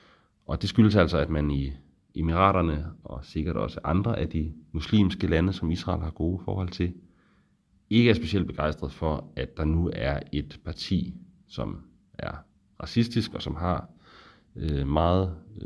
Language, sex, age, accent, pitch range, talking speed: English, male, 30-49, Danish, 75-95 Hz, 155 wpm